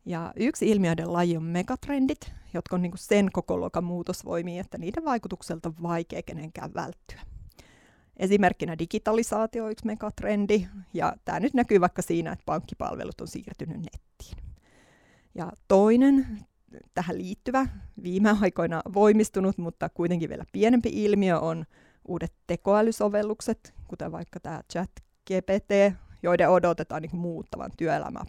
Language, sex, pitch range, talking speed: Finnish, female, 175-220 Hz, 125 wpm